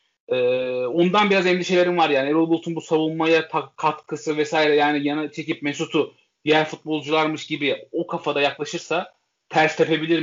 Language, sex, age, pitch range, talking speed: Turkish, male, 30-49, 145-175 Hz, 140 wpm